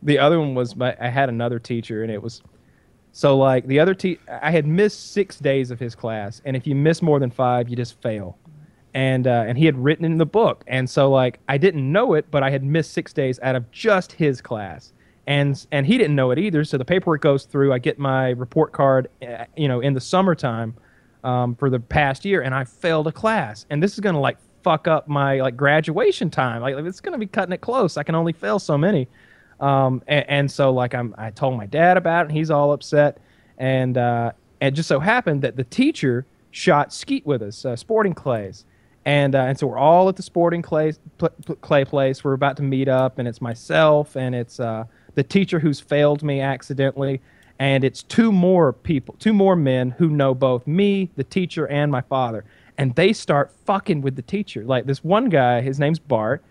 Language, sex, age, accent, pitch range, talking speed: English, male, 20-39, American, 125-160 Hz, 220 wpm